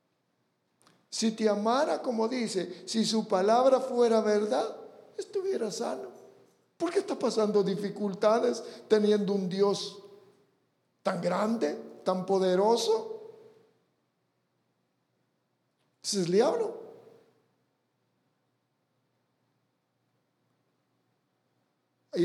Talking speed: 80 wpm